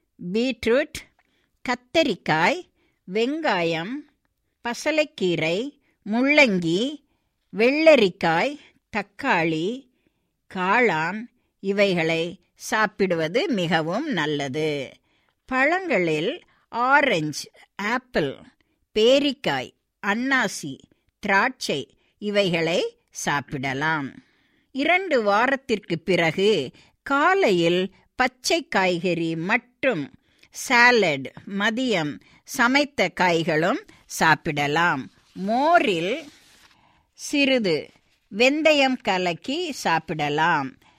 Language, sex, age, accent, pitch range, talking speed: Tamil, female, 60-79, native, 175-260 Hz, 55 wpm